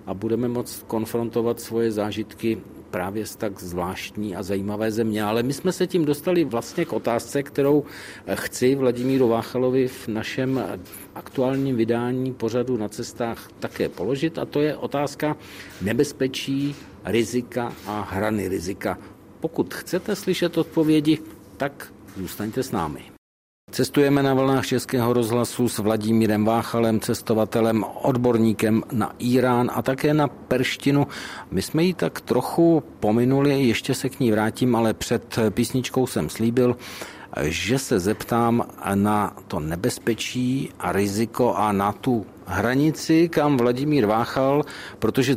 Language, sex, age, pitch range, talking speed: Czech, male, 50-69, 110-135 Hz, 130 wpm